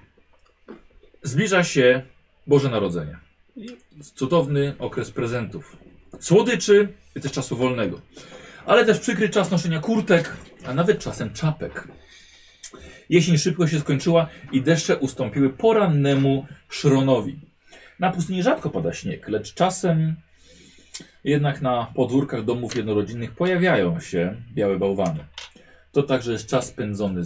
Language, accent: Polish, native